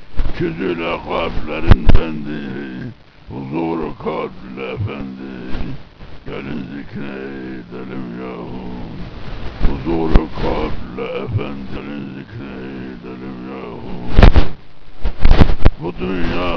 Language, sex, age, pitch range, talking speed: Turkish, male, 60-79, 65-80 Hz, 60 wpm